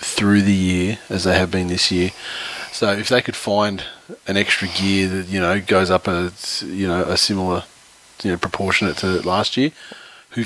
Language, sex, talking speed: English, male, 195 wpm